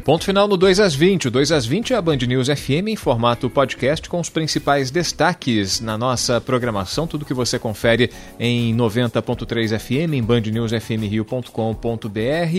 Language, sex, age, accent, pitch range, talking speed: Portuguese, male, 40-59, Brazilian, 120-150 Hz, 155 wpm